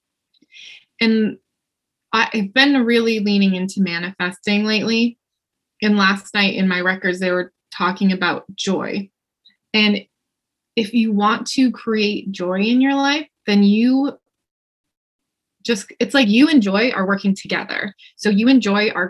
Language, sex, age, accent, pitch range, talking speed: English, female, 20-39, American, 195-240 Hz, 140 wpm